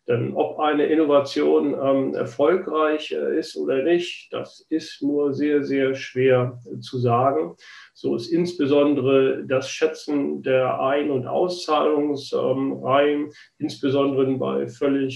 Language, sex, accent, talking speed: German, male, German, 125 wpm